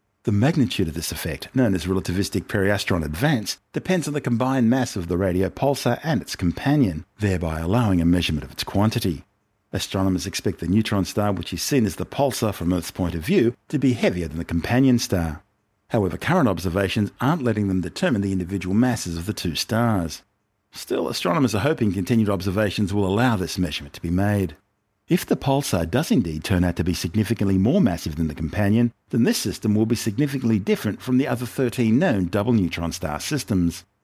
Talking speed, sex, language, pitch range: 195 wpm, male, English, 90-120 Hz